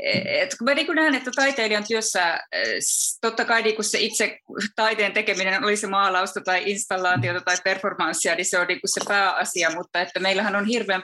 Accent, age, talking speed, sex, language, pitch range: native, 20-39, 175 wpm, female, Finnish, 165-215 Hz